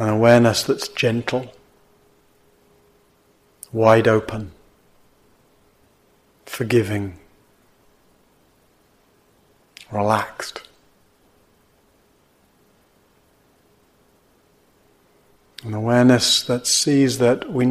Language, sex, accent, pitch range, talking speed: English, male, British, 110-130 Hz, 45 wpm